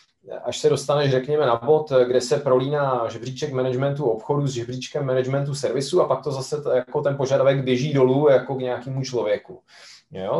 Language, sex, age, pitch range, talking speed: Czech, male, 30-49, 115-145 Hz, 180 wpm